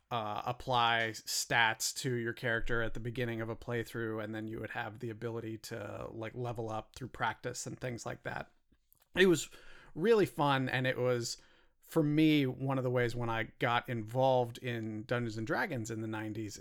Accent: American